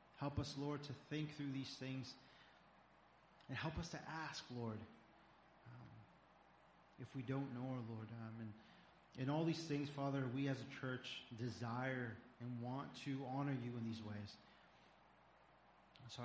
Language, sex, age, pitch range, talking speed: English, male, 30-49, 110-125 Hz, 150 wpm